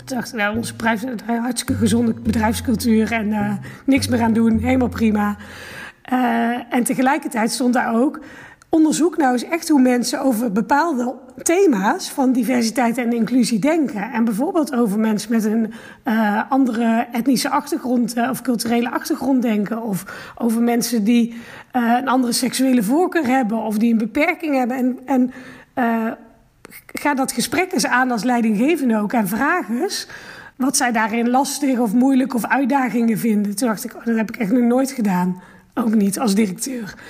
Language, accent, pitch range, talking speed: Dutch, Dutch, 230-280 Hz, 165 wpm